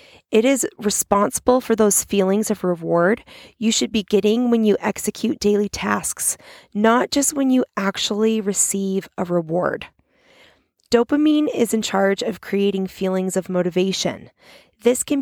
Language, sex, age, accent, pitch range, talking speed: English, female, 20-39, American, 195-240 Hz, 140 wpm